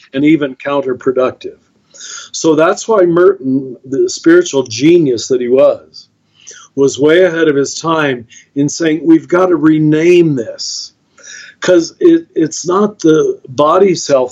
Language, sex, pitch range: English, male, 140-190 Hz